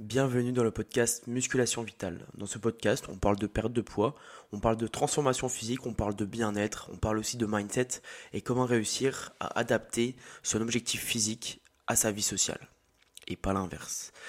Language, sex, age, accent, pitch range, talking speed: French, male, 20-39, French, 105-120 Hz, 185 wpm